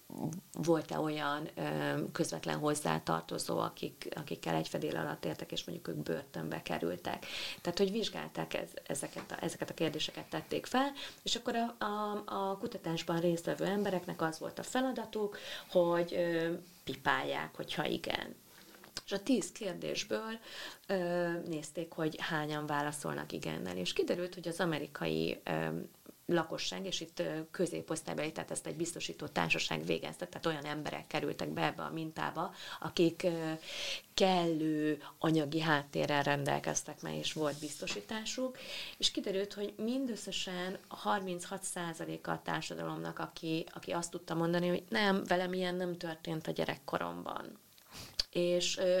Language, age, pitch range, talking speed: Hungarian, 30-49, 150-190 Hz, 130 wpm